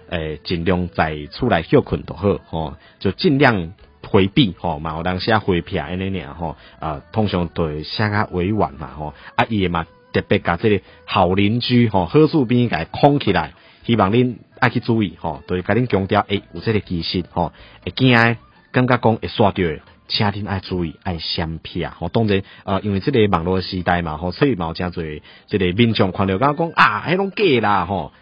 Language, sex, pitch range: Chinese, male, 85-115 Hz